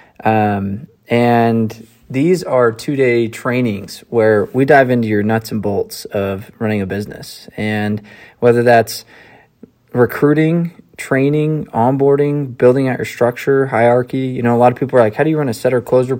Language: English